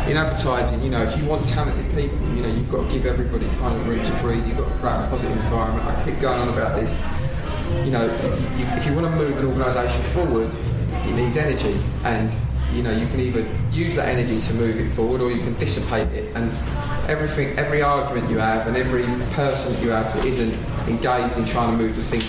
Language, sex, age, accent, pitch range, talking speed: English, male, 30-49, British, 110-140 Hz, 235 wpm